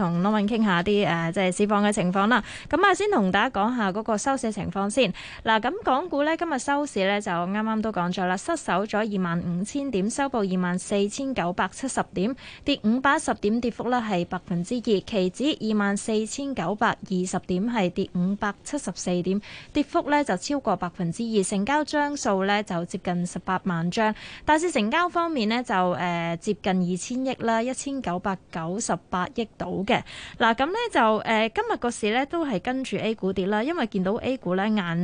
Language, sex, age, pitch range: Chinese, female, 20-39, 185-245 Hz